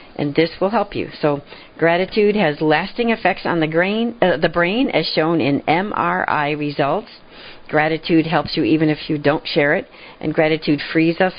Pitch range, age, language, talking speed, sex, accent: 150-205 Hz, 50-69, English, 175 wpm, female, American